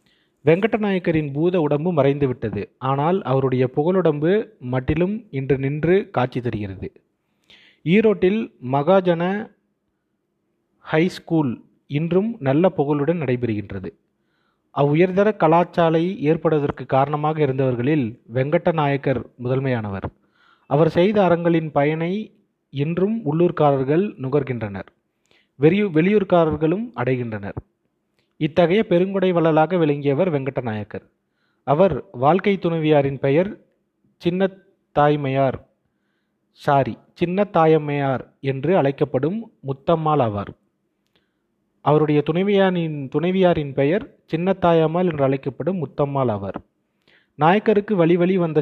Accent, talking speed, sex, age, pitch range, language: native, 85 wpm, male, 30-49, 135-180 Hz, Tamil